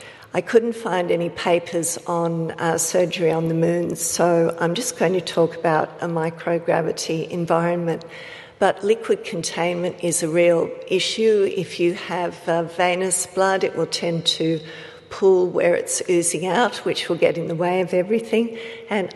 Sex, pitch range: female, 165-185 Hz